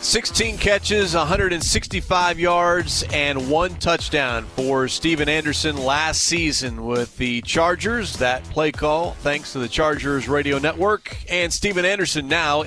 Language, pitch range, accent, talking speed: English, 135-170 Hz, American, 135 wpm